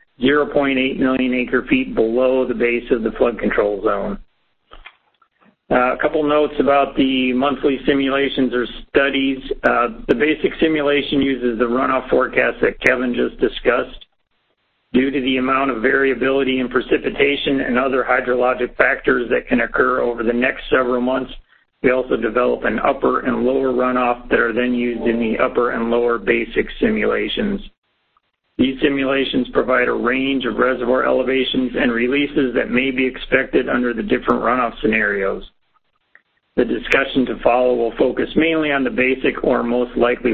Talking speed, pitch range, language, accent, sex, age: 155 wpm, 120-135 Hz, English, American, male, 50-69